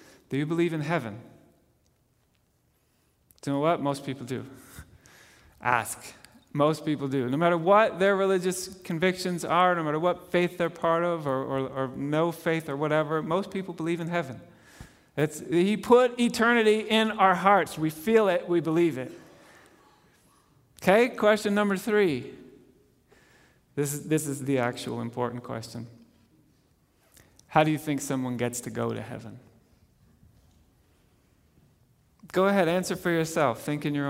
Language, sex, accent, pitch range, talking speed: English, male, American, 135-175 Hz, 150 wpm